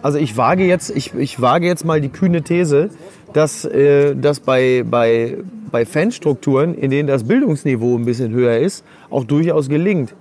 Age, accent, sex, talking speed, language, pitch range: 30-49, German, male, 155 wpm, German, 140-165 Hz